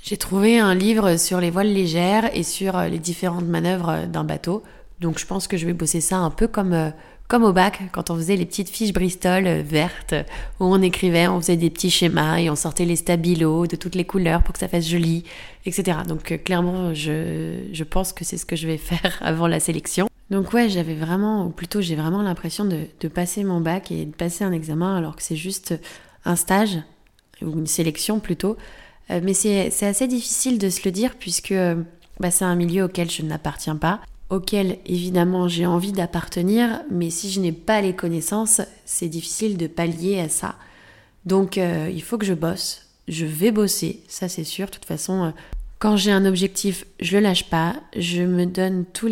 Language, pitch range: French, 165-195 Hz